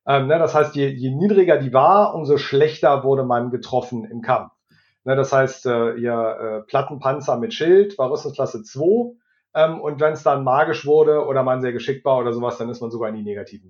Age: 40-59